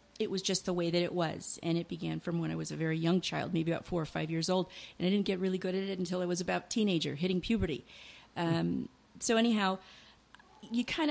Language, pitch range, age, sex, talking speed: English, 170-205 Hz, 40-59, female, 250 wpm